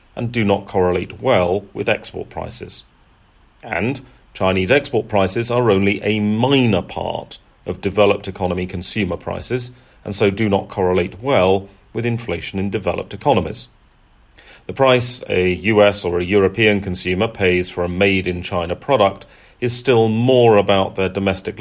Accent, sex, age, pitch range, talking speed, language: British, male, 40-59, 90-115 Hz, 145 wpm, English